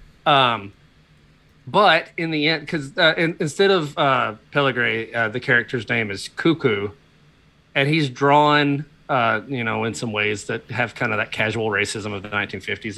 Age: 30-49